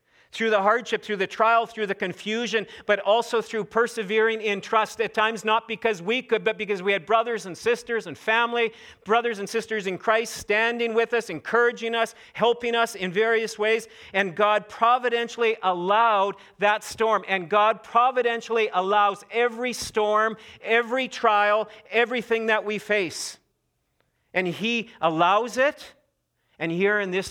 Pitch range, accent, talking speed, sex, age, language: 160-220 Hz, American, 155 wpm, male, 50-69, English